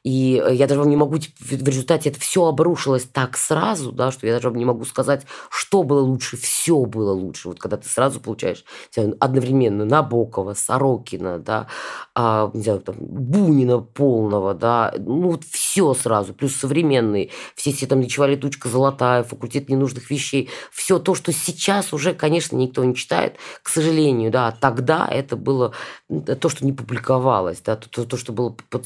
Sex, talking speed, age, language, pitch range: female, 155 wpm, 20-39, Russian, 125-145 Hz